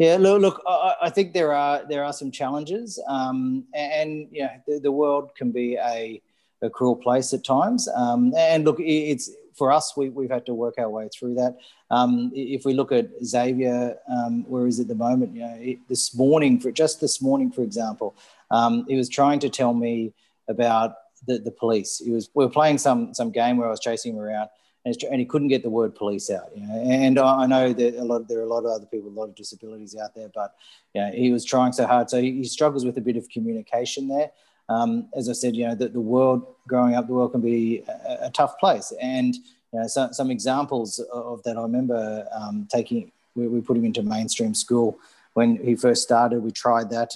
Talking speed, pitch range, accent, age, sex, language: 230 wpm, 115-135 Hz, Australian, 40-59, male, English